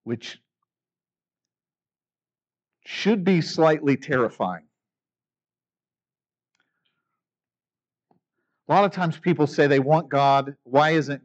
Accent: American